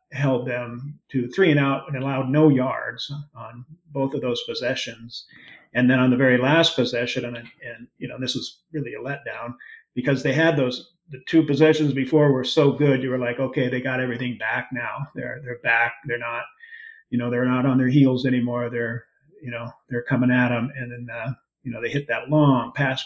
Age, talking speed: 40-59, 210 wpm